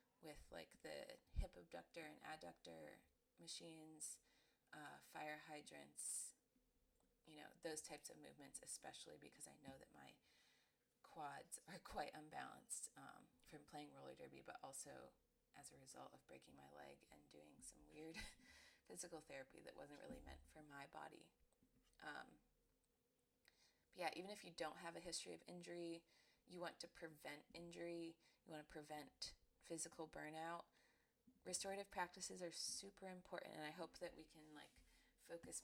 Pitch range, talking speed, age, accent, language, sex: 150-175 Hz, 150 wpm, 30-49, American, English, female